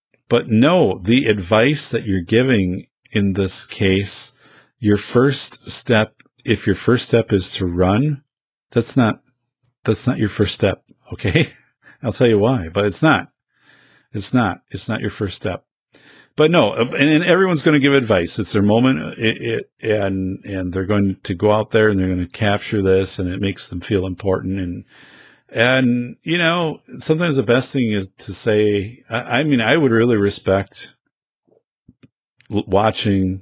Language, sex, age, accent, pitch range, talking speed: English, male, 50-69, American, 95-120 Hz, 170 wpm